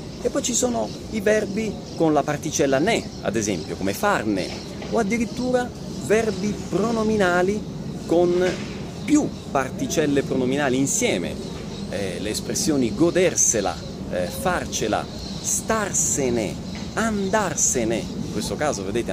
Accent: native